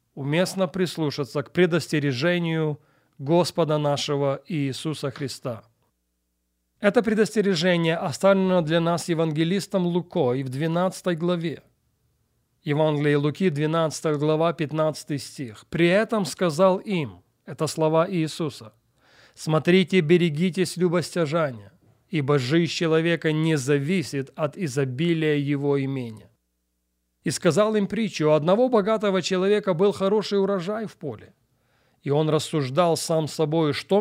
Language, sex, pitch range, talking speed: Russian, male, 135-180 Hz, 115 wpm